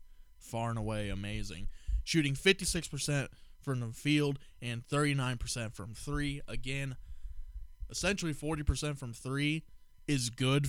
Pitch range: 105-140 Hz